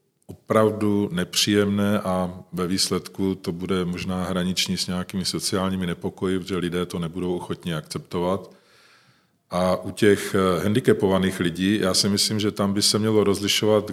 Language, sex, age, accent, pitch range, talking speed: Czech, male, 40-59, native, 90-100 Hz, 140 wpm